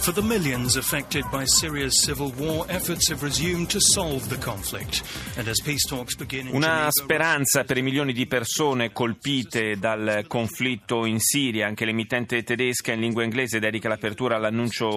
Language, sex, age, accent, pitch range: Italian, male, 30-49, native, 110-140 Hz